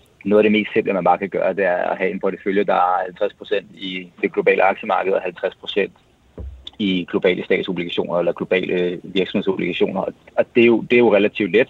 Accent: native